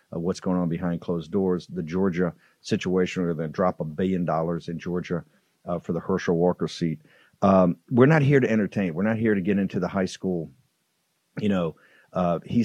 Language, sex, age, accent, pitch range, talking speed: English, male, 50-69, American, 90-110 Hz, 205 wpm